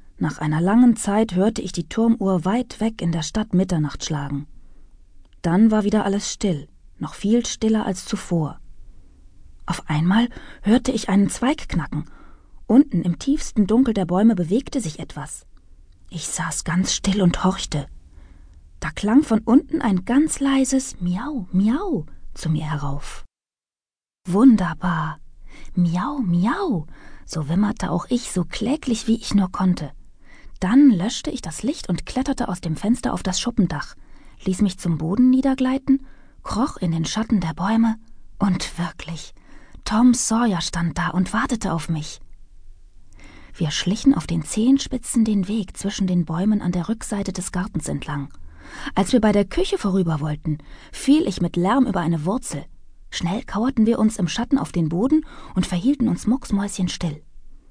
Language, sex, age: German, female, 20-39